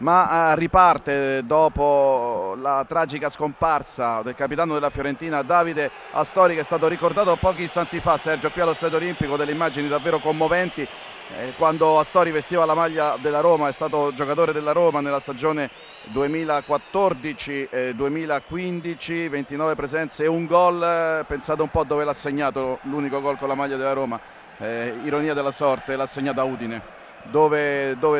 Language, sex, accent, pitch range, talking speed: Italian, male, native, 140-165 Hz, 155 wpm